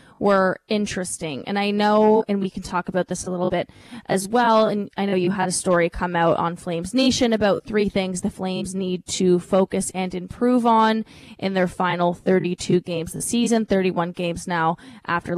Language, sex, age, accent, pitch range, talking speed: English, female, 20-39, American, 180-220 Hz, 200 wpm